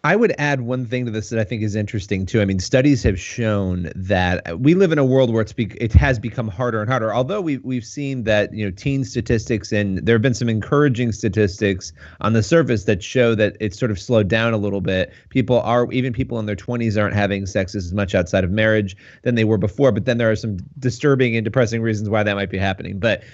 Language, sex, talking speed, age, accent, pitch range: English, male, 250 wpm, 30-49, American, 105-130 Hz